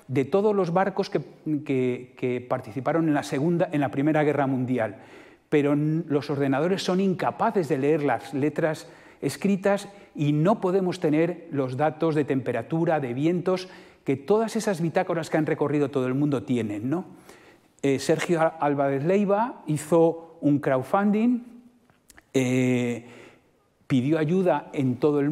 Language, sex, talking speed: Spanish, male, 135 wpm